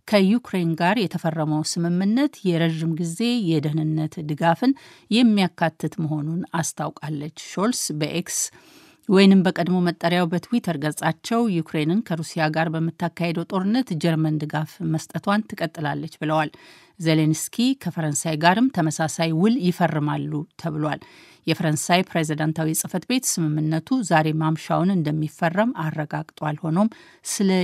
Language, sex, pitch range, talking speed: Amharic, female, 160-195 Hz, 100 wpm